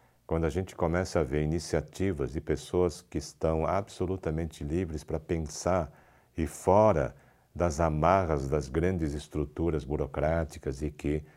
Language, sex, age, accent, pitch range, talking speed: Portuguese, male, 60-79, Brazilian, 75-95 Hz, 130 wpm